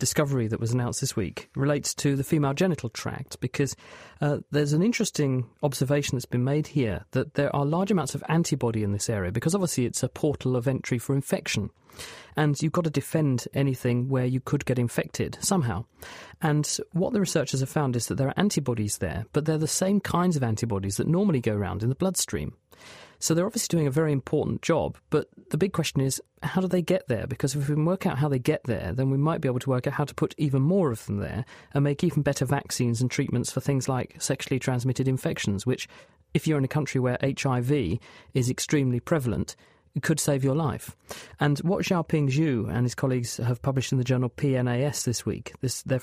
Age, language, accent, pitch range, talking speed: 40-59, English, British, 125-160 Hz, 220 wpm